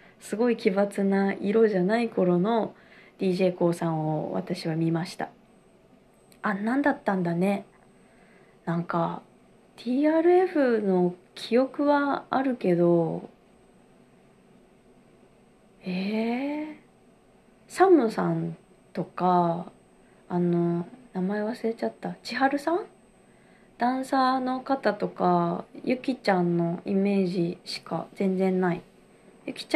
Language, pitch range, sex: Japanese, 175-230 Hz, female